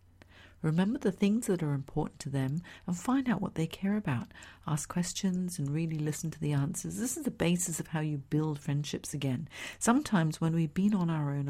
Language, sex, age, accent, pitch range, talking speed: English, female, 50-69, British, 140-175 Hz, 210 wpm